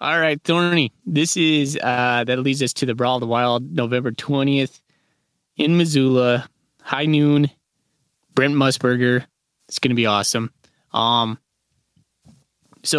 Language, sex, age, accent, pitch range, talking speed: English, male, 20-39, American, 115-140 Hz, 140 wpm